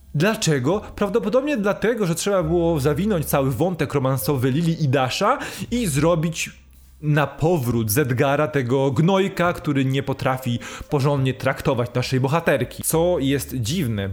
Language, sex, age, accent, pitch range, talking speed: Polish, male, 20-39, native, 120-175 Hz, 125 wpm